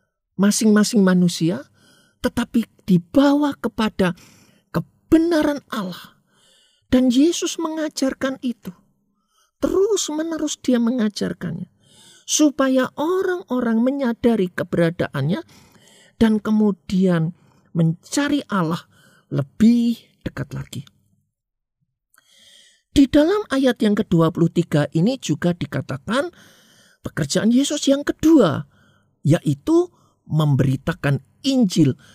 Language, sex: Indonesian, male